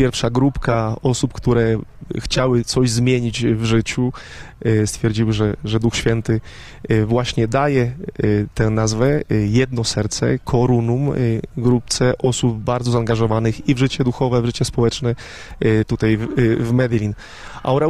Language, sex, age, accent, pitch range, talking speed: Polish, male, 20-39, native, 115-130 Hz, 125 wpm